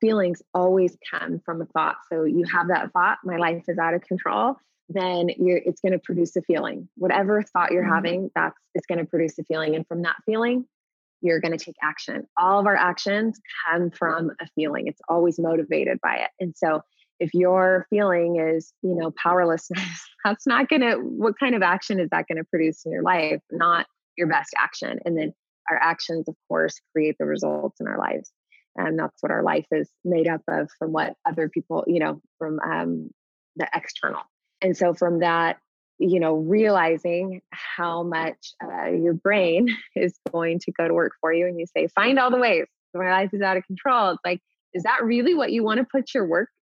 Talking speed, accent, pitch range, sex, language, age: 210 wpm, American, 165-195 Hz, female, English, 20-39